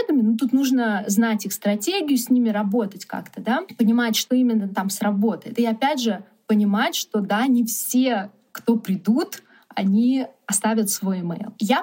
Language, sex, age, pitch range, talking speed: Russian, female, 20-39, 205-240 Hz, 155 wpm